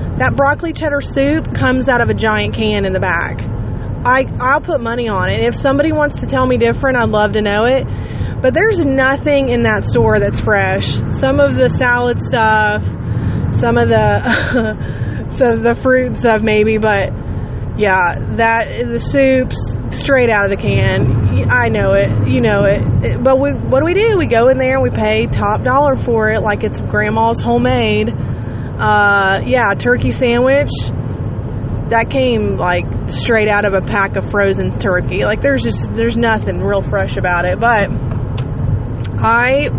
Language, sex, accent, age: English, female, American, 20-39